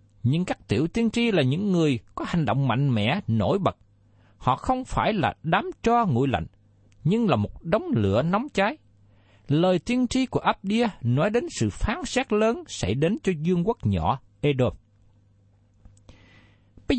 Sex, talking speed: male, 175 wpm